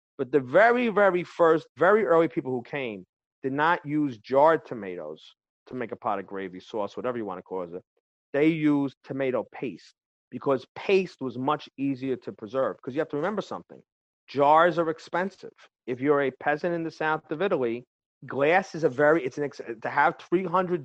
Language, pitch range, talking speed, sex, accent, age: English, 135-170 Hz, 190 wpm, male, American, 40-59